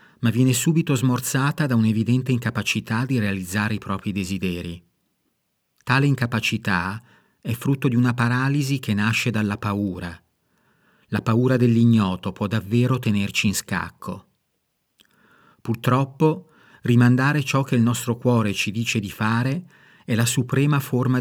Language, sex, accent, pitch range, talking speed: Italian, male, native, 105-125 Hz, 130 wpm